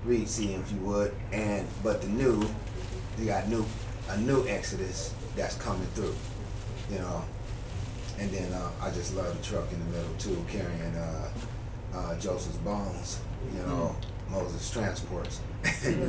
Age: 30-49